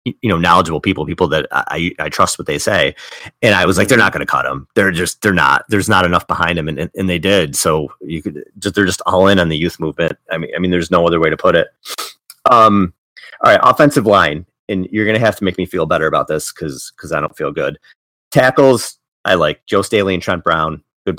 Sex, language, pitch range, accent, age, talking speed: male, English, 80-95 Hz, American, 30-49, 250 wpm